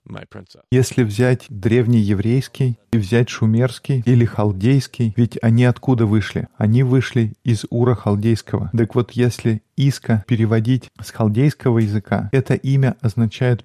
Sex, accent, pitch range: male, native, 110-125 Hz